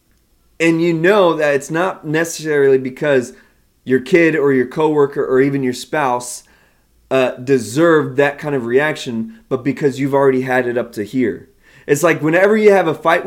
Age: 20-39